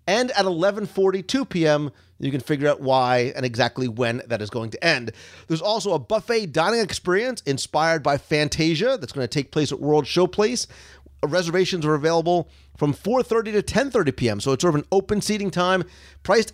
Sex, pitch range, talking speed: male, 140-195 Hz, 190 wpm